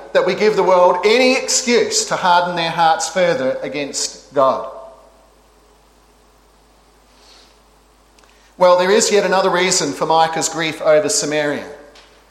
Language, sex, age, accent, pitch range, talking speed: English, male, 40-59, Australian, 160-205 Hz, 120 wpm